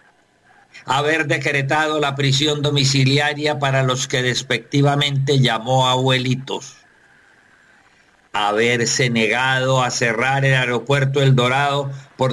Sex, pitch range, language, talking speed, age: male, 115-140 Hz, Spanish, 95 wpm, 50-69